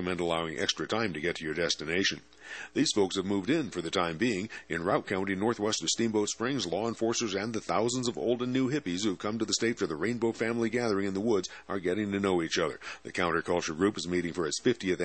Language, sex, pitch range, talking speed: English, male, 85-105 Hz, 250 wpm